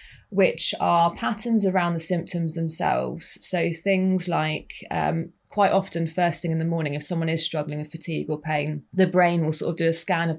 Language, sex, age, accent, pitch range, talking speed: English, female, 20-39, British, 160-185 Hz, 200 wpm